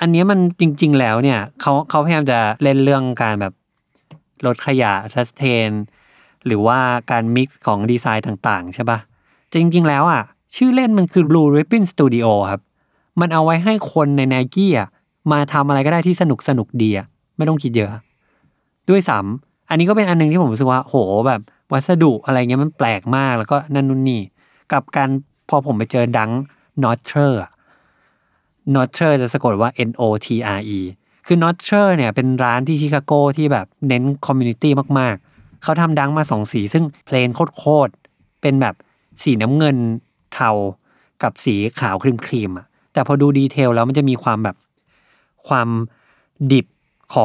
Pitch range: 115-155 Hz